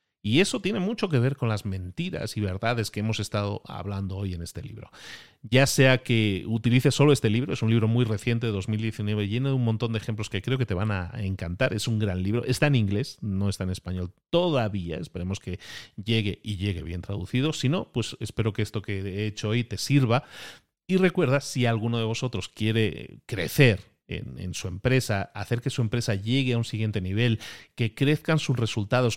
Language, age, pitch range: Spanish, 40-59, 100-130 Hz